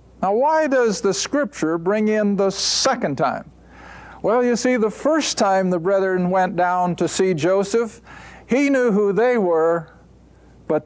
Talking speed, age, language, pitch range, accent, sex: 160 wpm, 50-69, English, 175-235 Hz, American, male